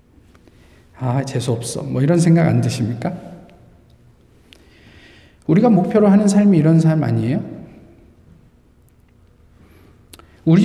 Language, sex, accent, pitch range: Korean, male, native, 125-170 Hz